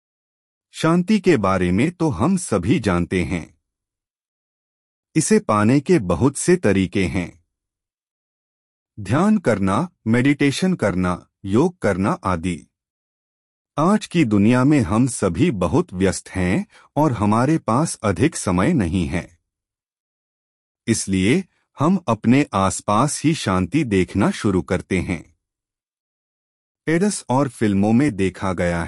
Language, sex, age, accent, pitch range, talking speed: Hindi, male, 30-49, native, 90-145 Hz, 115 wpm